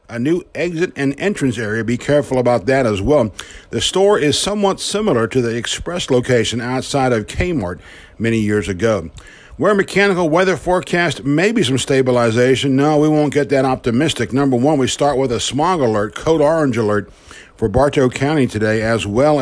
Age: 50-69